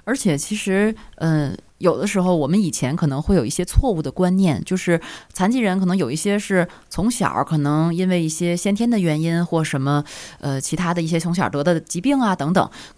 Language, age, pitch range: Chinese, 20-39, 150-205 Hz